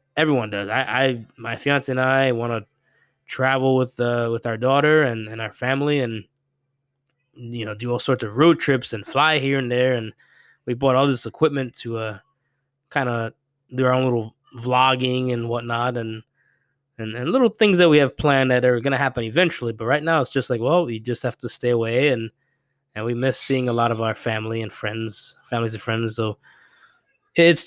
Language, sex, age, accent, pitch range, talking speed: English, male, 20-39, American, 115-140 Hz, 205 wpm